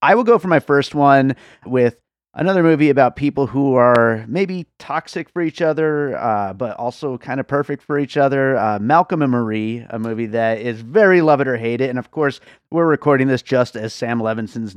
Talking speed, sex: 210 wpm, male